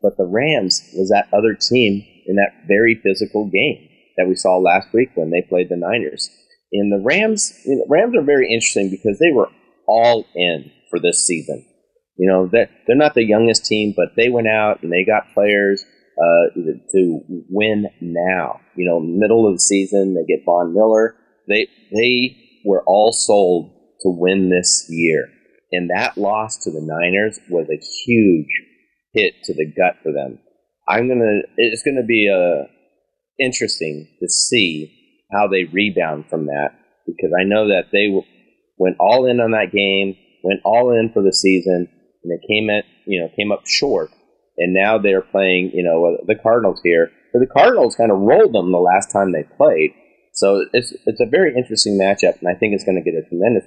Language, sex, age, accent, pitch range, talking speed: English, male, 30-49, American, 90-115 Hz, 195 wpm